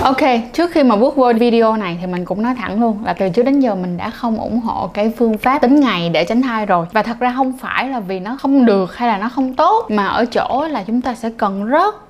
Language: Vietnamese